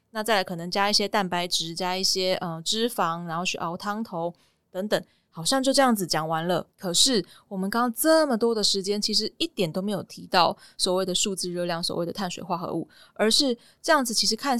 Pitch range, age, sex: 180-225 Hz, 20-39, female